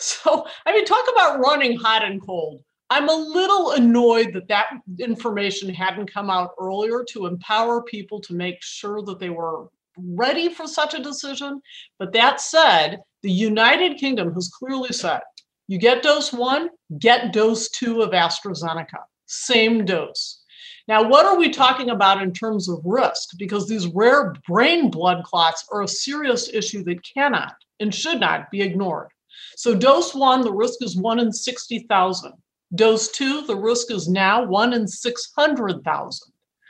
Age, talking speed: 50-69, 160 wpm